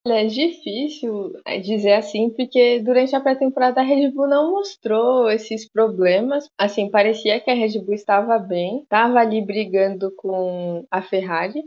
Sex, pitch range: female, 205-255 Hz